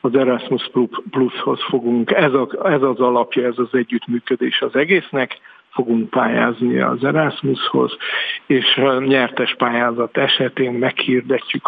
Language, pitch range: Hungarian, 120-140 Hz